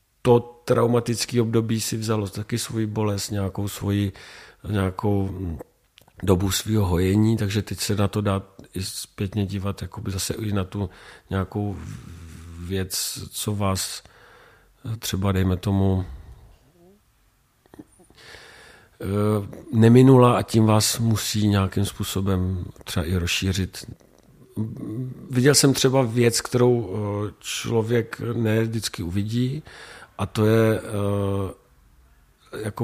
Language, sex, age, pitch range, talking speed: Czech, male, 50-69, 95-110 Hz, 105 wpm